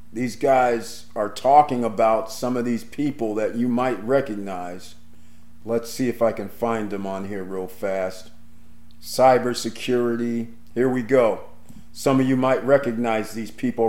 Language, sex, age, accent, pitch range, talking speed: English, male, 40-59, American, 105-130 Hz, 150 wpm